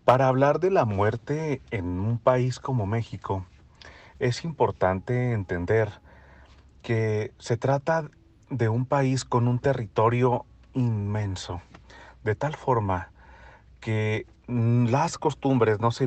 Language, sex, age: Spanish, male, 40-59